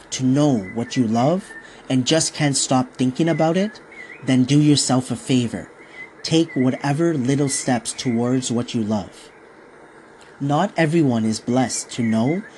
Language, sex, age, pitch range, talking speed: English, male, 40-59, 125-155 Hz, 150 wpm